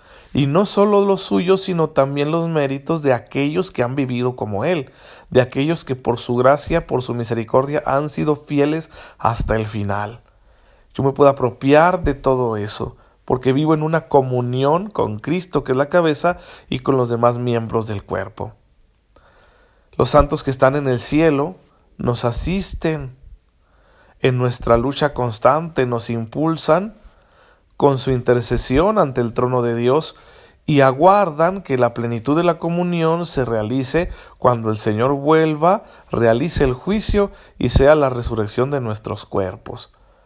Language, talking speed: Spanish, 155 wpm